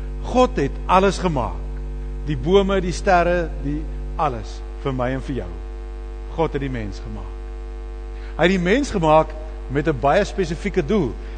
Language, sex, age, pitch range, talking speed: English, male, 50-69, 110-175 Hz, 160 wpm